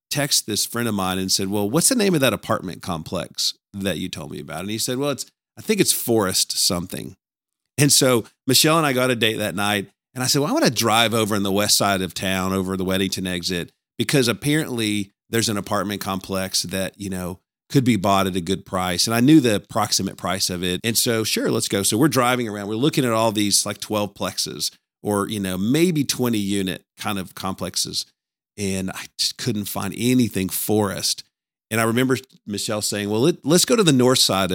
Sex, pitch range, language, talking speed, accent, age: male, 95-125 Hz, English, 220 wpm, American, 40-59